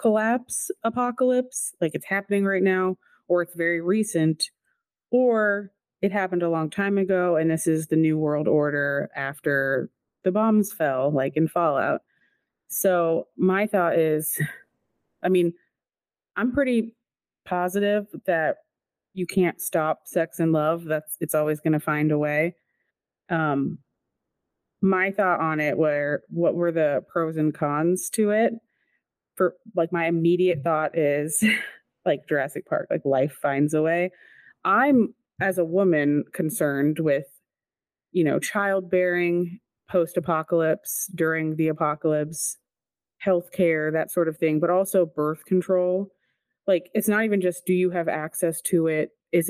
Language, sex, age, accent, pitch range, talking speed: English, female, 30-49, American, 155-195 Hz, 145 wpm